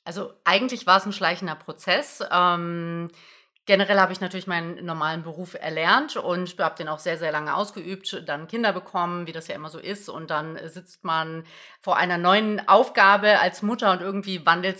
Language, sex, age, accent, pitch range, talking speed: German, female, 30-49, German, 175-205 Hz, 185 wpm